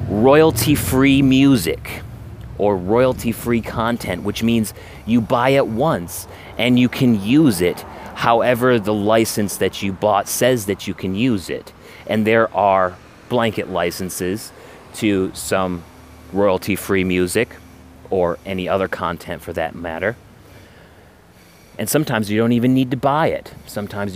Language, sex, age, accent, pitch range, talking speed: English, male, 30-49, American, 95-115 Hz, 135 wpm